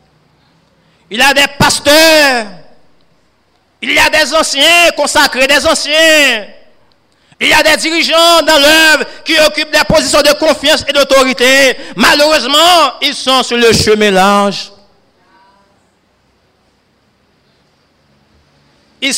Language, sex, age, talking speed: French, male, 50-69, 115 wpm